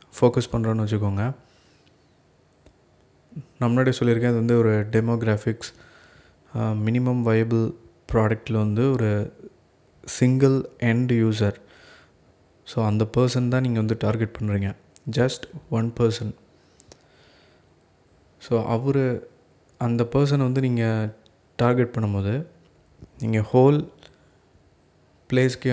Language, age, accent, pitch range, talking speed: Tamil, 20-39, native, 110-125 Hz, 95 wpm